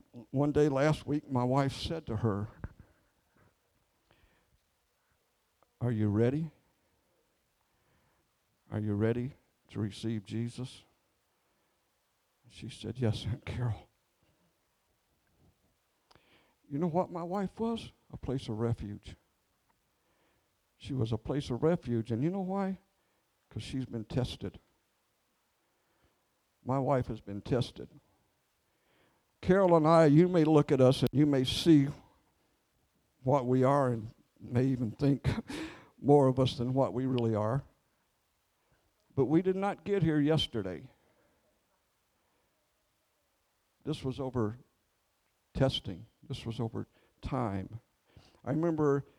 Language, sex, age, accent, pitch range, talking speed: English, male, 60-79, American, 115-155 Hz, 115 wpm